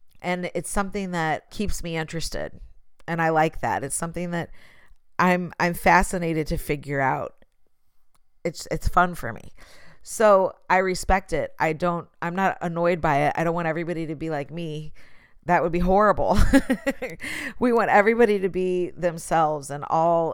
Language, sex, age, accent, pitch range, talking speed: English, female, 40-59, American, 160-185 Hz, 165 wpm